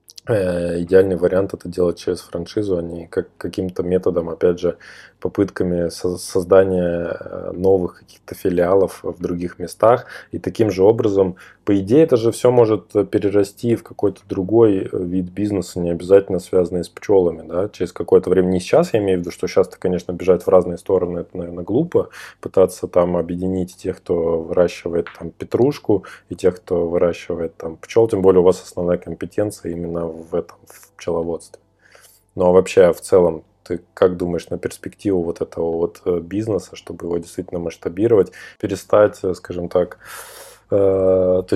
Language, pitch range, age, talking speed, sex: Russian, 90-100 Hz, 20-39, 150 wpm, male